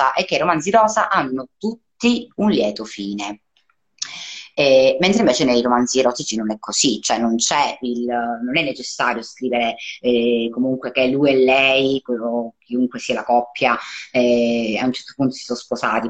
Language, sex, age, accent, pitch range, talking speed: Italian, female, 20-39, native, 120-145 Hz, 170 wpm